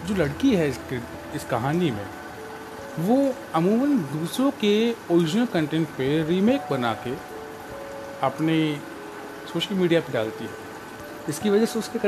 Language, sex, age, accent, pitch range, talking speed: Hindi, male, 40-59, native, 125-200 Hz, 135 wpm